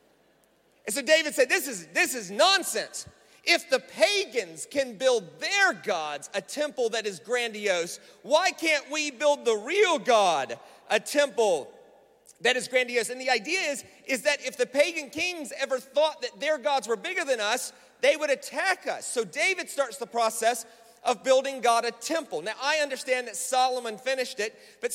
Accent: American